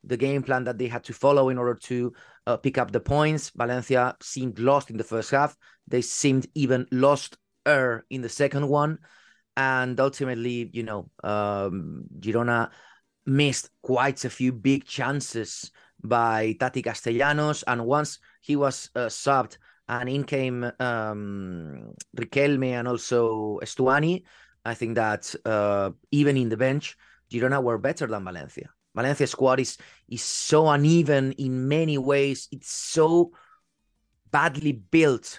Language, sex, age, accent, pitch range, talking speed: English, male, 30-49, Spanish, 115-140 Hz, 150 wpm